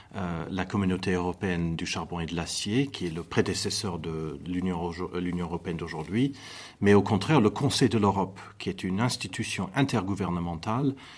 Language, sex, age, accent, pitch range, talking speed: French, male, 50-69, French, 90-110 Hz, 160 wpm